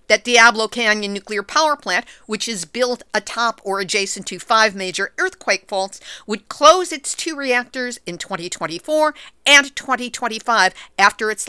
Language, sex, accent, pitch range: English, female, American, 195-255 Hz